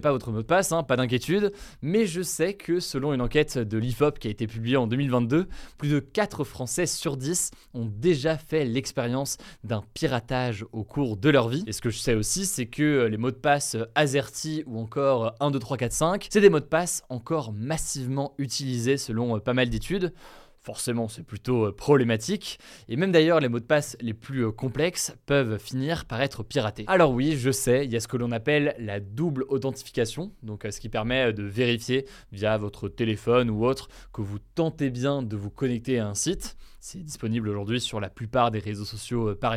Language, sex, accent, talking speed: French, male, French, 205 wpm